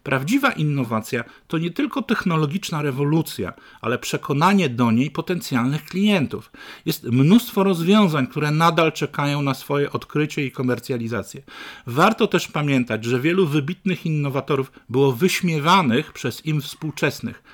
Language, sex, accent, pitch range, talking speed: Polish, male, native, 125-170 Hz, 125 wpm